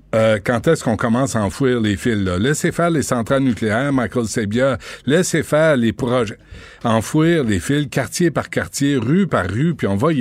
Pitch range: 105-135 Hz